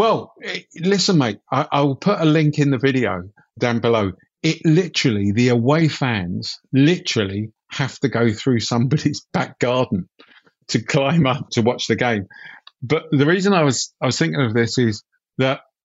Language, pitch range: English, 105-145 Hz